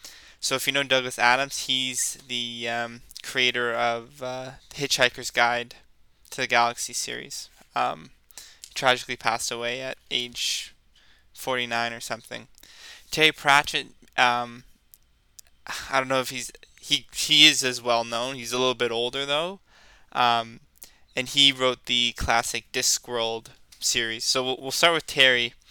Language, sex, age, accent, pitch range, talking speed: English, male, 10-29, American, 120-135 Hz, 145 wpm